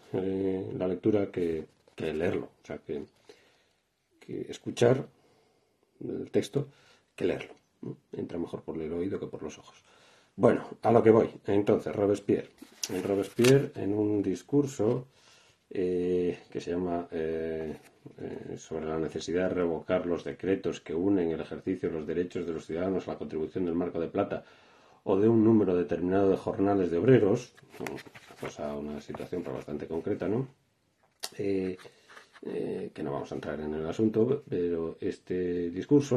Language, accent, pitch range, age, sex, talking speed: Spanish, Spanish, 85-105 Hz, 40-59, male, 160 wpm